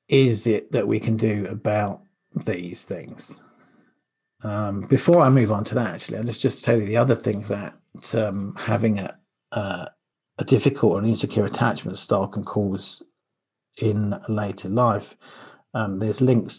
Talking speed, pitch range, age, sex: 160 wpm, 95-110 Hz, 40-59, male